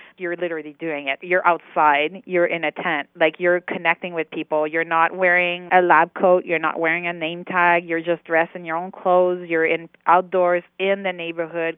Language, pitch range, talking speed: English, 155-175 Hz, 205 wpm